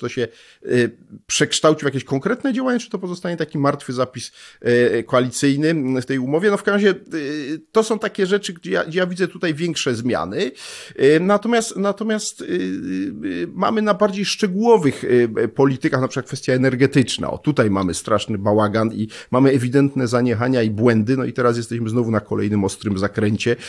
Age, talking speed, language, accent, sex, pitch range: 40-59, 160 wpm, Polish, native, male, 110-160 Hz